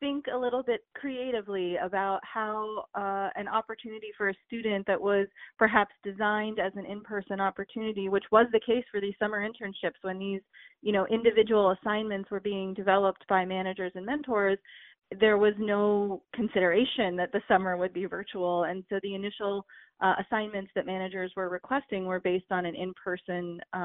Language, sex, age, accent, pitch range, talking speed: English, female, 30-49, American, 185-210 Hz, 170 wpm